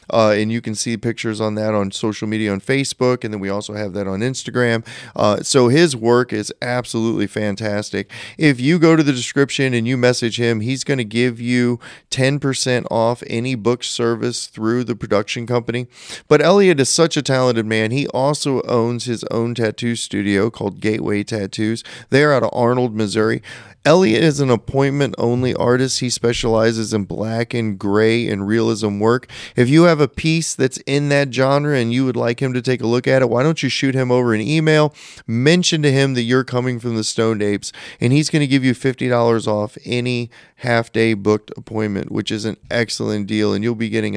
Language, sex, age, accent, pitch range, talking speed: English, male, 30-49, American, 110-140 Hz, 200 wpm